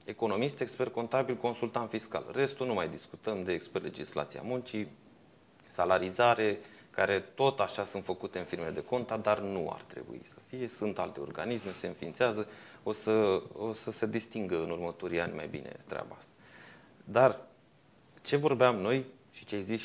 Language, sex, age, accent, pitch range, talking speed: Romanian, male, 30-49, native, 100-130 Hz, 165 wpm